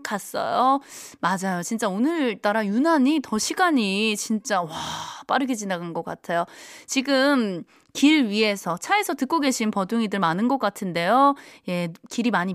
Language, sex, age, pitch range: Korean, female, 20-39, 200-305 Hz